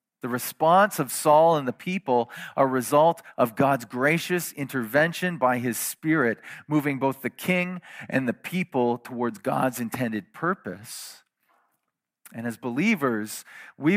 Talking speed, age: 140 wpm, 40-59